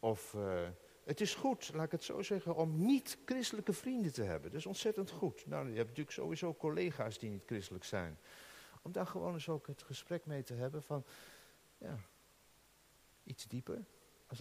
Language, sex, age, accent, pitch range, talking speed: Dutch, male, 60-79, Dutch, 140-200 Hz, 180 wpm